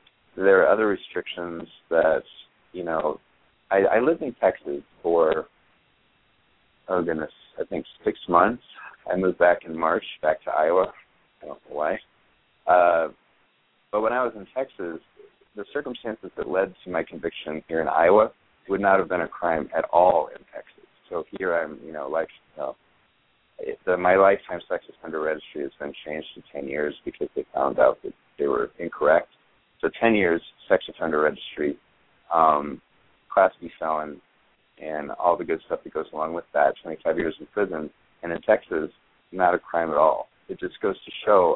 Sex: male